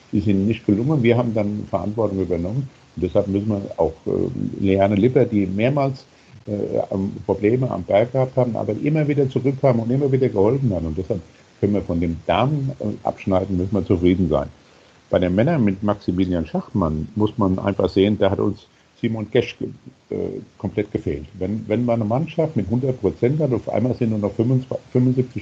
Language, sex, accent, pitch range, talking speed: German, male, German, 95-120 Hz, 190 wpm